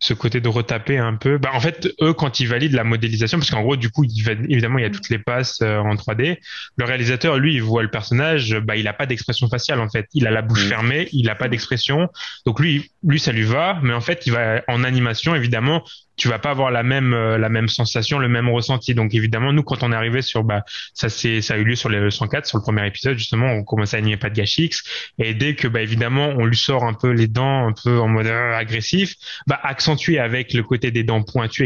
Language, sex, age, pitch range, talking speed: French, male, 20-39, 110-140 Hz, 265 wpm